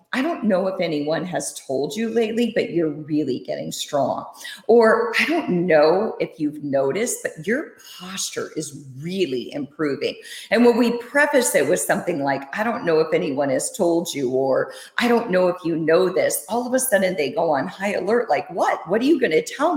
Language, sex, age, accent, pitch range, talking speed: English, female, 50-69, American, 165-245 Hz, 205 wpm